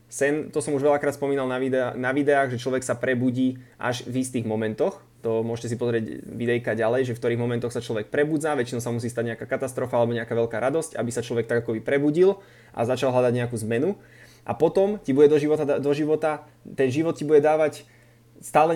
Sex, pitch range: male, 120-150 Hz